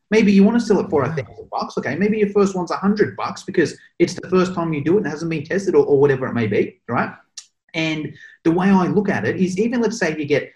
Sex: male